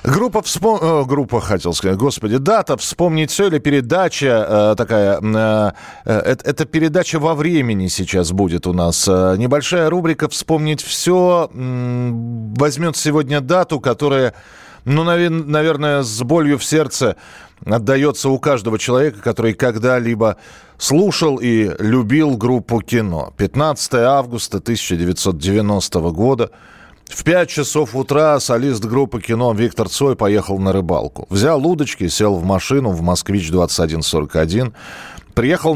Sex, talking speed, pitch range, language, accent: male, 110 wpm, 100-145 Hz, Russian, native